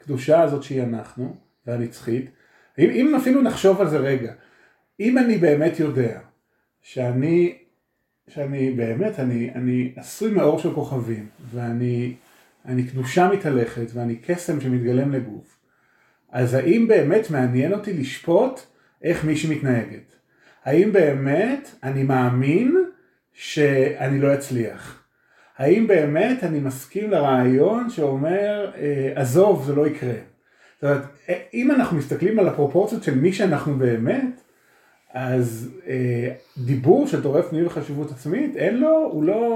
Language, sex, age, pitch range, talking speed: Hebrew, male, 30-49, 125-190 Hz, 120 wpm